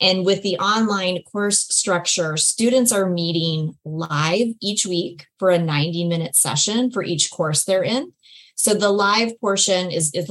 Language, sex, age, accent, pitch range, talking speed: English, female, 30-49, American, 170-210 Hz, 155 wpm